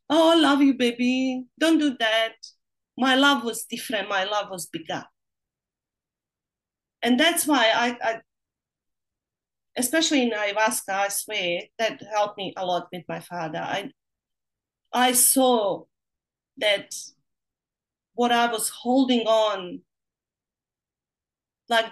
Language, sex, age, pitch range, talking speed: English, female, 30-49, 220-295 Hz, 120 wpm